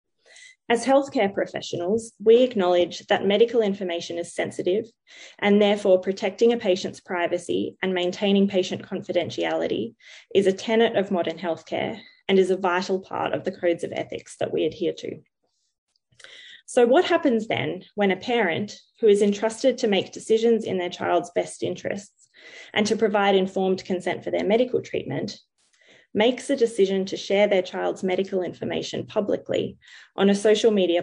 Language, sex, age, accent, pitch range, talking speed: English, female, 20-39, Australian, 180-230 Hz, 155 wpm